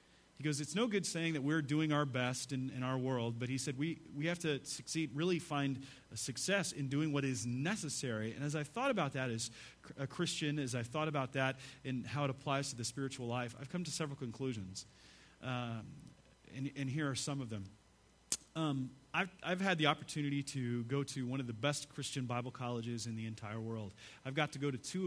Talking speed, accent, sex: 220 wpm, American, male